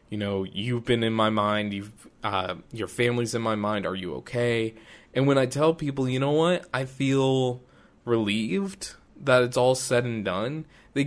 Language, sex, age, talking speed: English, male, 20-39, 185 wpm